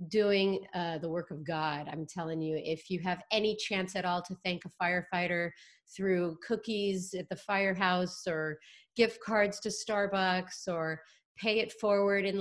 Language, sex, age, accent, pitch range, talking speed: English, female, 30-49, American, 170-205 Hz, 170 wpm